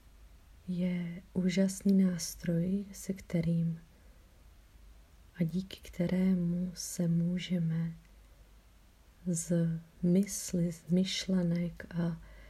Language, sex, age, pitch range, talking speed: Czech, female, 30-49, 165-185 Hz, 70 wpm